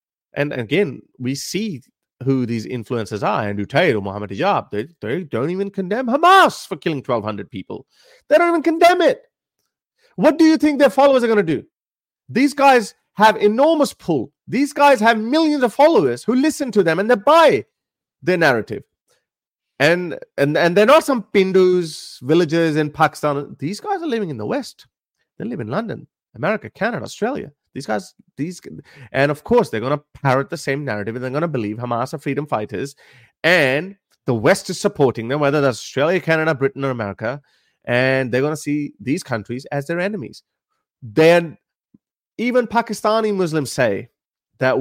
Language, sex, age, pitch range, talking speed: English, male, 30-49, 130-210 Hz, 180 wpm